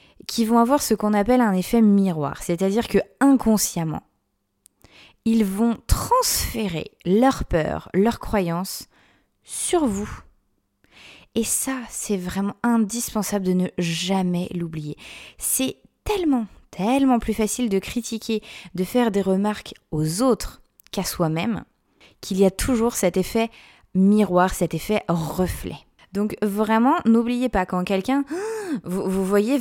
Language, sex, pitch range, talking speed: French, female, 165-220 Hz, 130 wpm